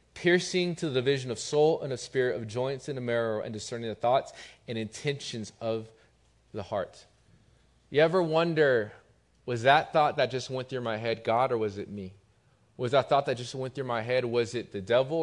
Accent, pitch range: American, 100-130 Hz